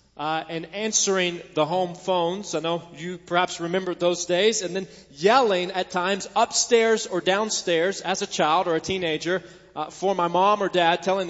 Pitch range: 155-200 Hz